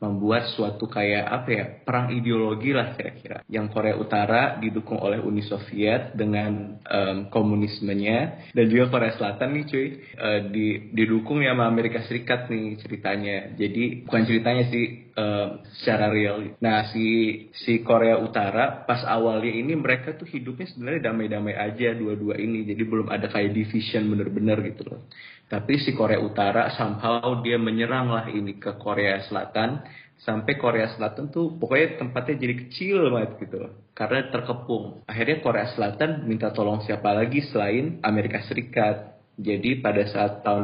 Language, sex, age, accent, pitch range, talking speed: Indonesian, male, 20-39, native, 105-120 Hz, 150 wpm